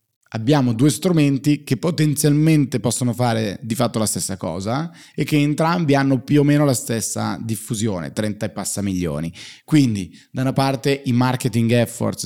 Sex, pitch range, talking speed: male, 100-135 Hz, 160 wpm